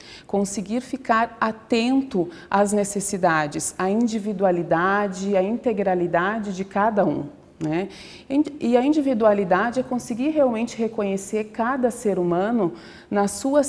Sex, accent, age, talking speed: female, Brazilian, 40-59, 110 wpm